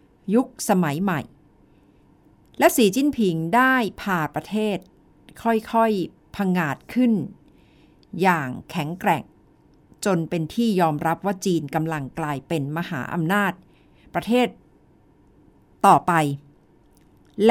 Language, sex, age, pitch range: Thai, female, 60-79, 160-220 Hz